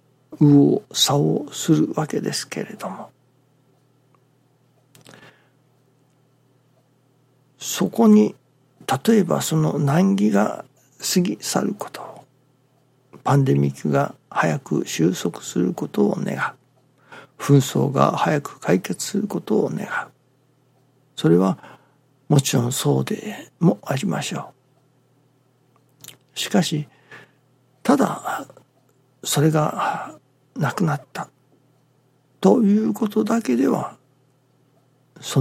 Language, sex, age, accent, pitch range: Japanese, male, 60-79, native, 130-145 Hz